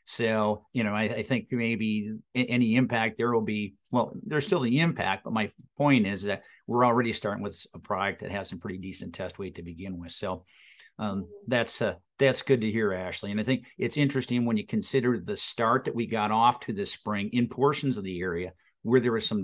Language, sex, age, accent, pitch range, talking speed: English, male, 50-69, American, 105-120 Hz, 225 wpm